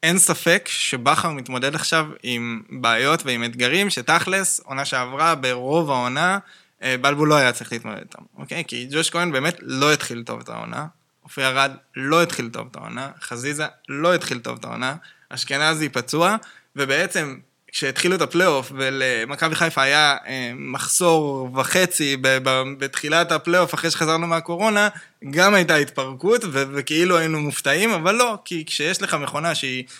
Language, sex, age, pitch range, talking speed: Hebrew, male, 20-39, 135-170 Hz, 150 wpm